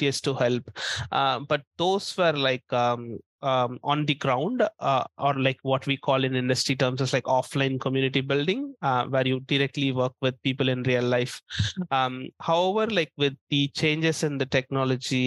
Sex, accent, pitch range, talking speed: male, Indian, 130-150 Hz, 180 wpm